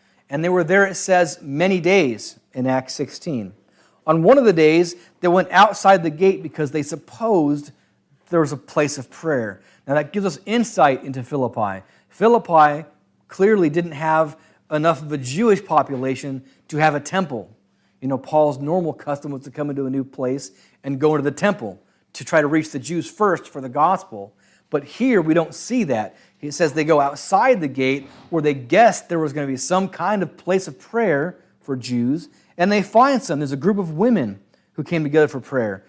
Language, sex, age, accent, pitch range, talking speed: English, male, 40-59, American, 135-175 Hz, 200 wpm